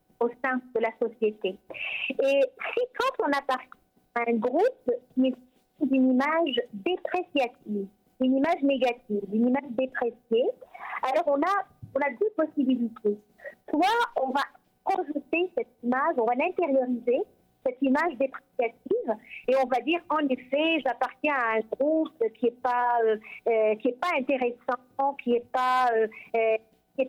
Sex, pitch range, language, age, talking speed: female, 245-320 Hz, French, 50-69, 140 wpm